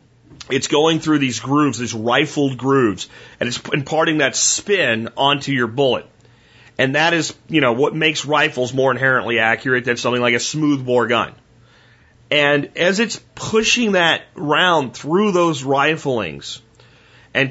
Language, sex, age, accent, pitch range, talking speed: English, male, 40-59, American, 120-160 Hz, 145 wpm